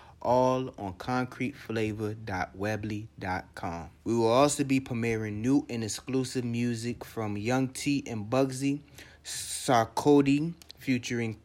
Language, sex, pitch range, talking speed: English, male, 110-140 Hz, 100 wpm